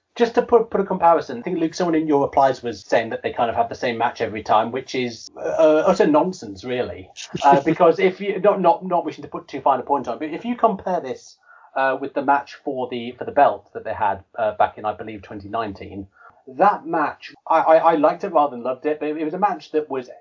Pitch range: 110-165 Hz